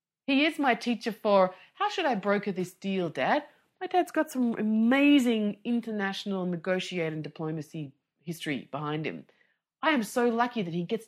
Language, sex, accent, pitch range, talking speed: English, female, Australian, 175-250 Hz, 160 wpm